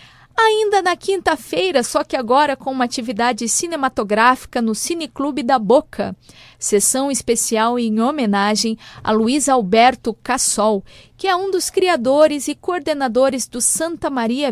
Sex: female